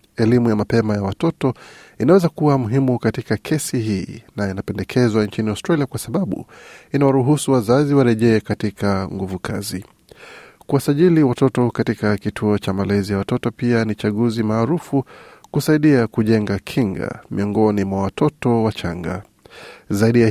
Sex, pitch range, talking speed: male, 105-135 Hz, 125 wpm